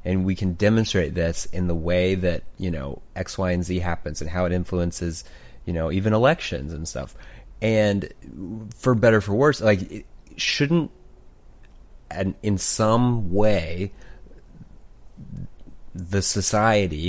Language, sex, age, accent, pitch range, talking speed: English, male, 30-49, American, 90-105 Hz, 135 wpm